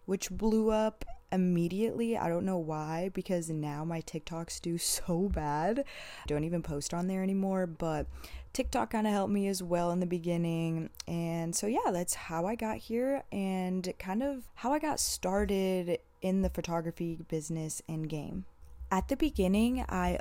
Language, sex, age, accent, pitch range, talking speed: English, female, 20-39, American, 160-195 Hz, 170 wpm